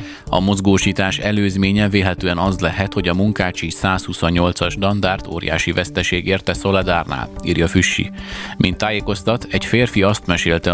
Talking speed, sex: 130 wpm, male